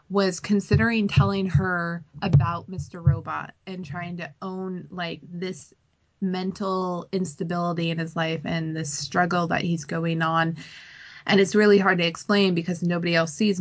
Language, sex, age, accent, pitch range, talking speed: English, female, 20-39, American, 165-190 Hz, 155 wpm